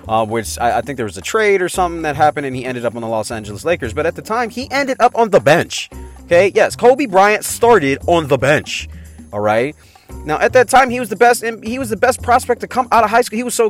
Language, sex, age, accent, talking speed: English, male, 30-49, American, 285 wpm